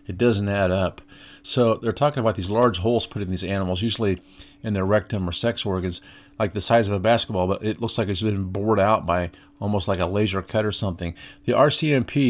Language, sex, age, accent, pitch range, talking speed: English, male, 40-59, American, 95-115 Hz, 225 wpm